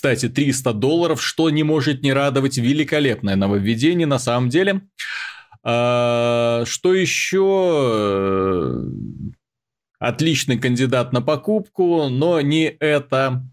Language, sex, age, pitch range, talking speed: Russian, male, 30-49, 110-140 Hz, 100 wpm